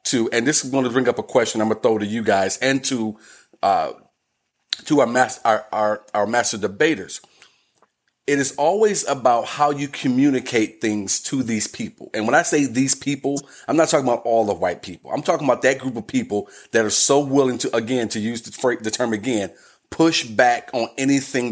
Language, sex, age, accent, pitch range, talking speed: English, male, 30-49, American, 110-135 Hz, 210 wpm